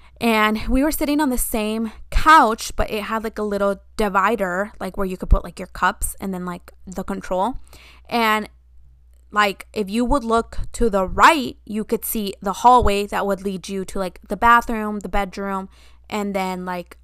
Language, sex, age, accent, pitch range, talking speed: English, female, 20-39, American, 190-240 Hz, 195 wpm